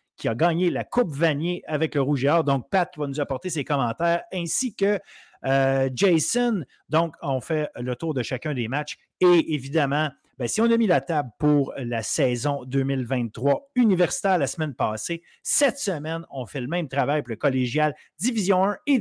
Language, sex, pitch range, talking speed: French, male, 135-180 Hz, 195 wpm